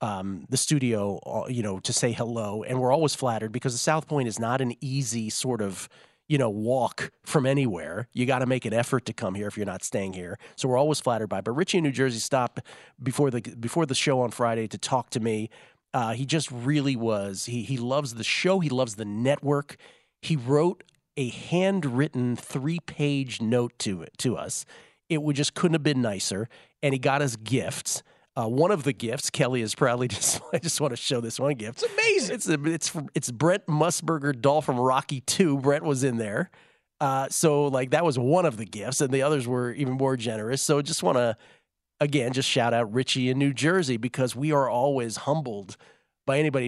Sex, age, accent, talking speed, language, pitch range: male, 40-59, American, 220 wpm, English, 120-145 Hz